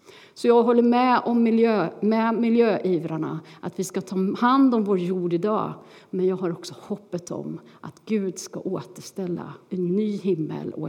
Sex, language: female, Swedish